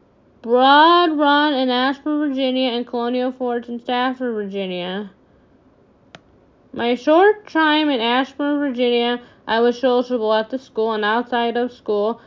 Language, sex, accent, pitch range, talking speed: English, female, American, 220-260 Hz, 130 wpm